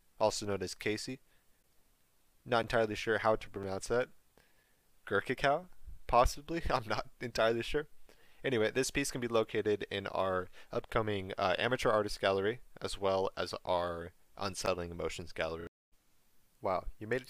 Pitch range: 90-110 Hz